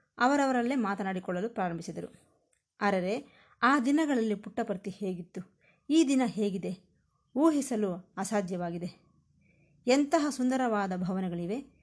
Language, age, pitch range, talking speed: Kannada, 20-39, 190-265 Hz, 80 wpm